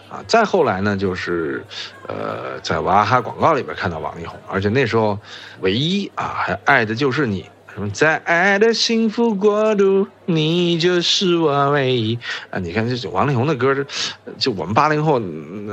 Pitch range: 105-160 Hz